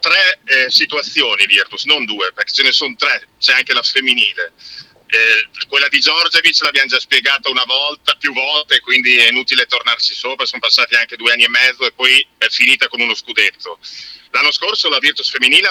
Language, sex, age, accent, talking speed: Italian, male, 50-69, native, 195 wpm